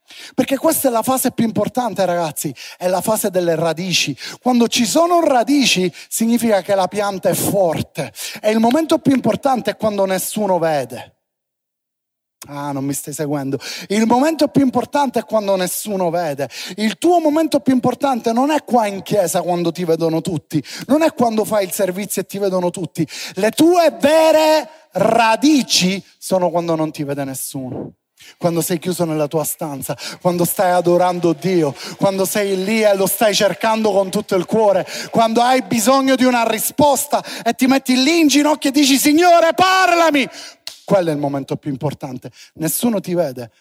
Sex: male